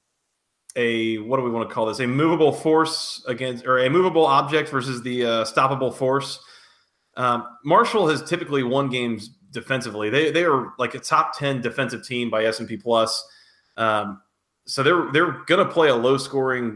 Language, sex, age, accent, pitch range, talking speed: English, male, 30-49, American, 120-155 Hz, 180 wpm